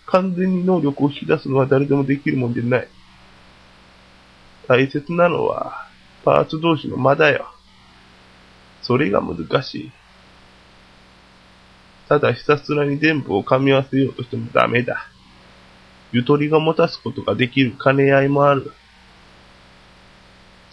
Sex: male